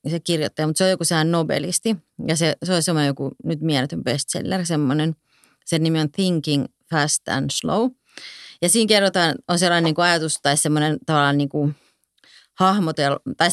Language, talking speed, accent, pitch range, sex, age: Finnish, 165 wpm, native, 150-185 Hz, female, 30-49